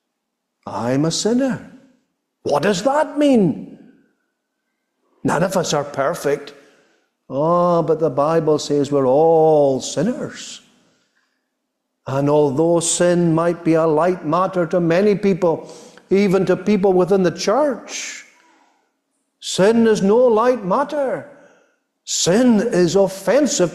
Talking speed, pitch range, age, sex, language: 115 wpm, 165-250 Hz, 60-79, male, English